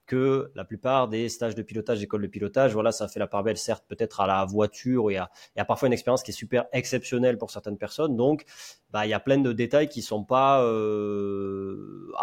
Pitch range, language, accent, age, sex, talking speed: 105-125 Hz, French, French, 20-39, male, 240 wpm